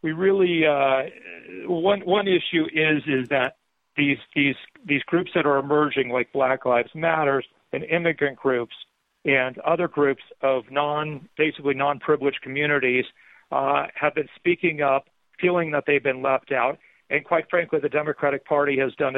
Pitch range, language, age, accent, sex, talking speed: 130-150 Hz, English, 40-59, American, male, 160 wpm